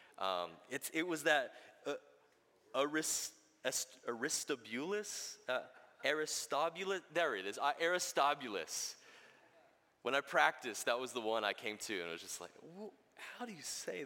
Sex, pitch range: male, 100-140 Hz